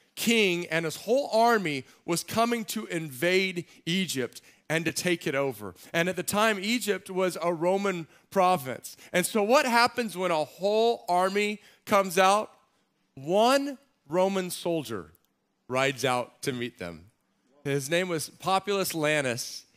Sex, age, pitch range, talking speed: male, 40-59, 135-195 Hz, 145 wpm